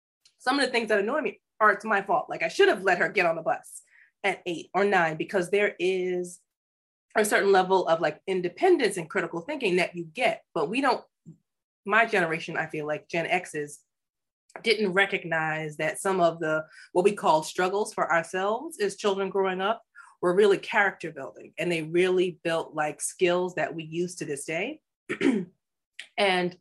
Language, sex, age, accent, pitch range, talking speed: English, female, 30-49, American, 170-220 Hz, 185 wpm